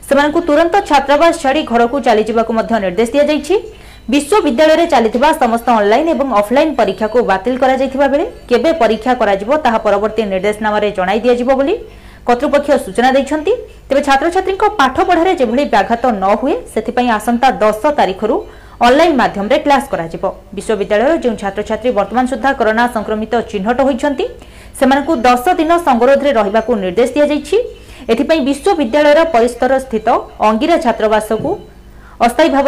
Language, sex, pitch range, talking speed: Hindi, female, 225-290 Hz, 80 wpm